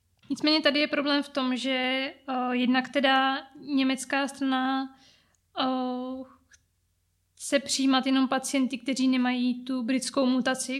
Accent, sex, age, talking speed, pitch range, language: native, female, 20-39, 115 wpm, 245-265 Hz, Czech